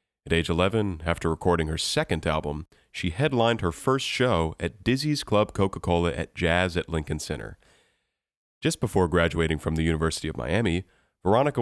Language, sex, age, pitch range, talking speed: English, male, 30-49, 80-100 Hz, 160 wpm